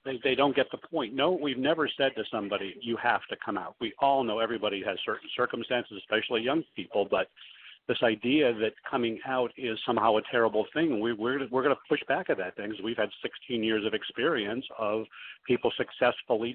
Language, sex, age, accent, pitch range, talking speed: English, male, 50-69, American, 110-130 Hz, 205 wpm